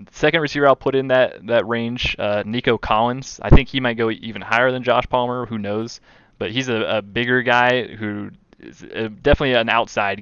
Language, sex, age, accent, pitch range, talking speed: English, male, 20-39, American, 105-125 Hz, 200 wpm